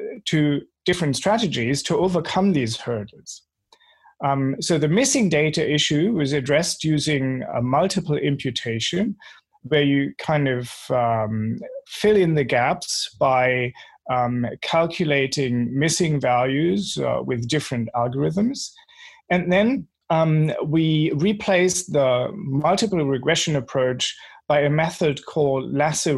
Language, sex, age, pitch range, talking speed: English, male, 30-49, 130-170 Hz, 115 wpm